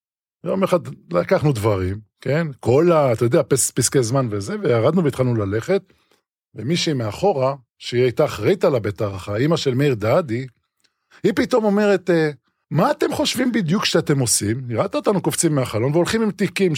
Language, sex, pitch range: Hebrew, male, 110-165 Hz